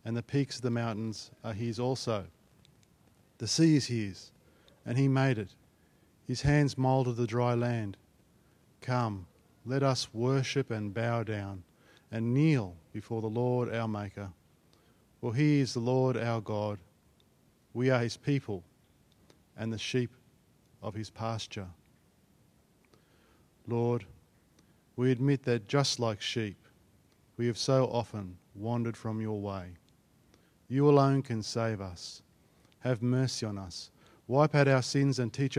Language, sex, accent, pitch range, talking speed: English, male, Australian, 105-130 Hz, 140 wpm